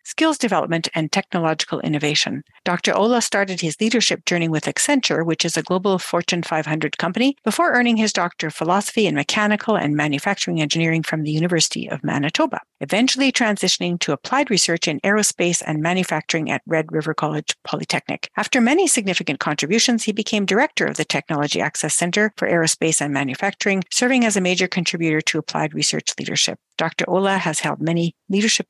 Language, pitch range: English, 160-215 Hz